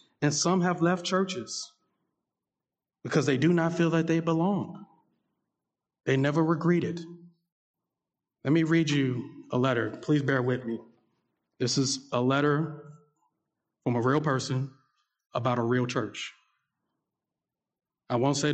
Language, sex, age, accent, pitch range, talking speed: English, male, 40-59, American, 130-160 Hz, 135 wpm